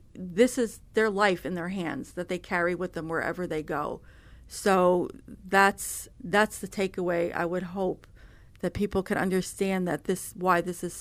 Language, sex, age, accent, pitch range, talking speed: English, female, 40-59, American, 170-200 Hz, 175 wpm